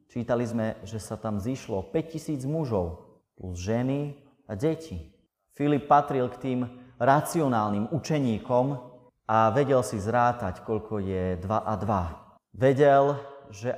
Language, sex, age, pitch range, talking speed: Slovak, male, 30-49, 100-130 Hz, 125 wpm